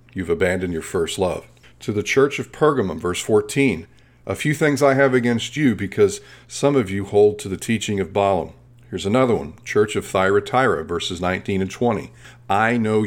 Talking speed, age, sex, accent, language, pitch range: 190 wpm, 40-59, male, American, English, 95-125 Hz